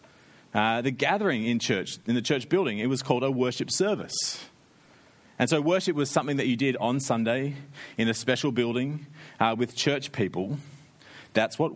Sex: male